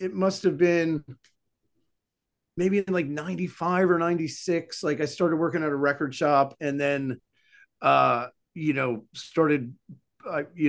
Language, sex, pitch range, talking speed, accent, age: English, male, 130-170 Hz, 140 wpm, American, 40-59